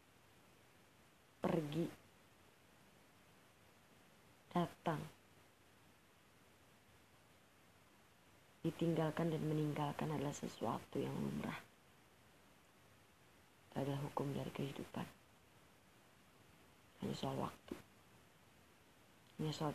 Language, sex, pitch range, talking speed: Indonesian, female, 100-155 Hz, 55 wpm